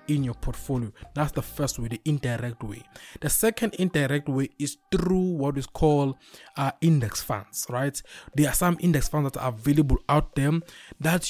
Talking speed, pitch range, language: 180 wpm, 130-155 Hz, English